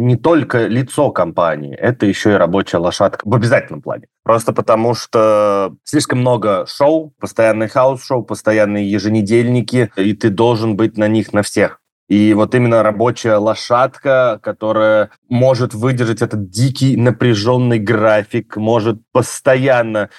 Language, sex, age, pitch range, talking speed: Russian, male, 30-49, 100-120 Hz, 130 wpm